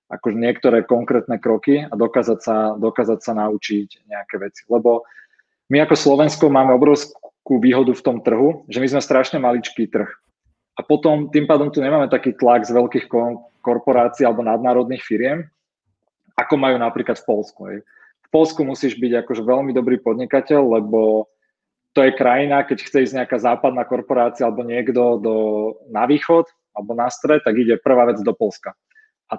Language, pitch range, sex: Slovak, 115-140 Hz, male